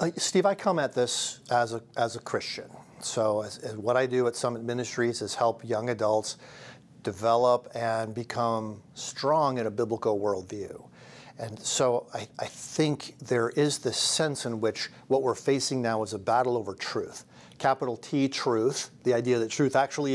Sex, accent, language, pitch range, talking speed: male, American, English, 115-135 Hz, 175 wpm